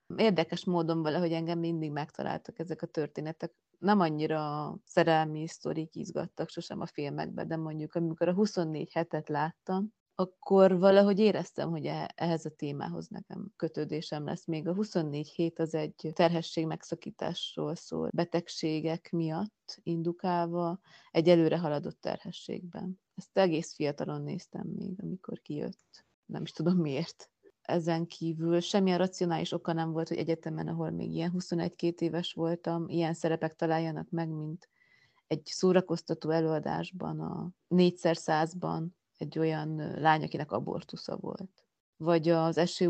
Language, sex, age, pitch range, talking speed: Hungarian, female, 30-49, 160-180 Hz, 135 wpm